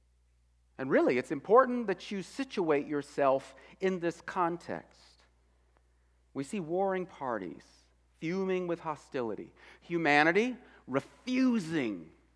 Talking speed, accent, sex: 95 wpm, American, male